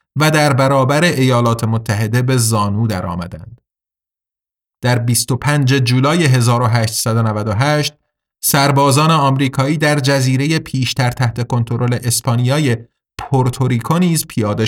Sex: male